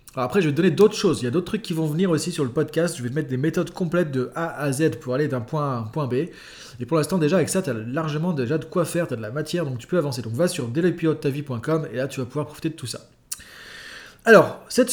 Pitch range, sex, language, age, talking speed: 140-175 Hz, male, French, 20-39, 305 wpm